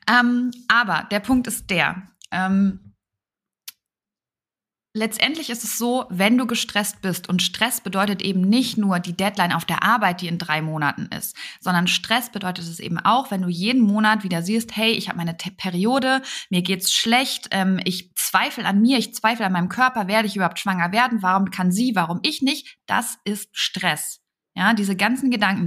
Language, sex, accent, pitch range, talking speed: German, female, German, 190-240 Hz, 180 wpm